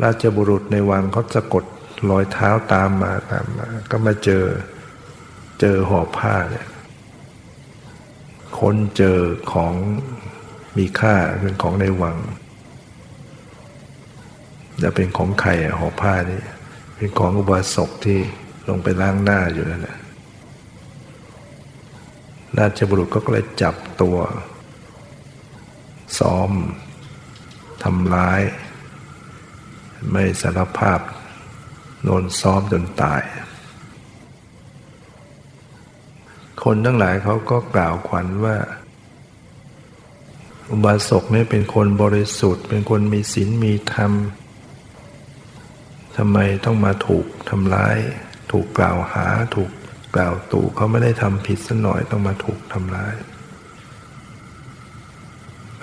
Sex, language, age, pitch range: male, Thai, 60-79, 95-110 Hz